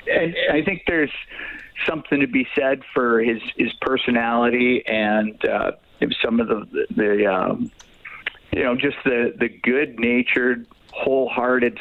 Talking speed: 140 wpm